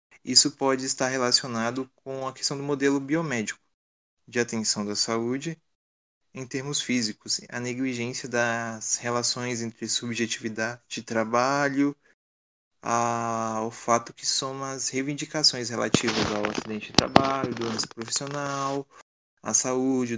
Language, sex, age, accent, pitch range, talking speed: Portuguese, male, 20-39, Brazilian, 115-135 Hz, 120 wpm